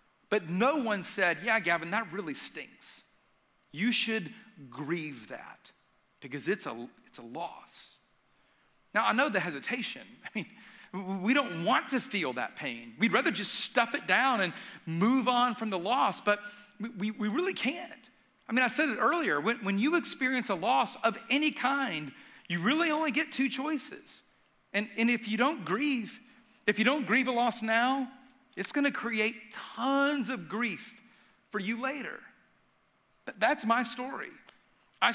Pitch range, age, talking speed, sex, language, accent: 200-260 Hz, 40-59, 170 wpm, male, English, American